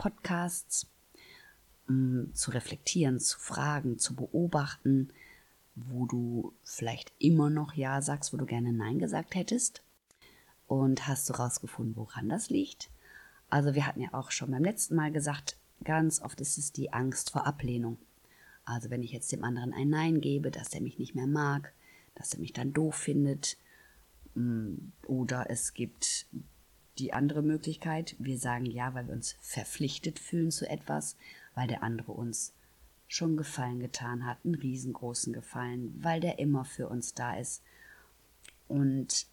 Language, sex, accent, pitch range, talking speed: German, female, German, 125-155 Hz, 155 wpm